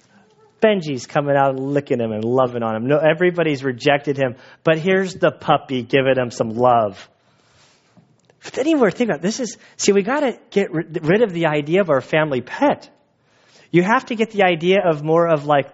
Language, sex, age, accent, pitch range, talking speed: English, male, 30-49, American, 145-200 Hz, 185 wpm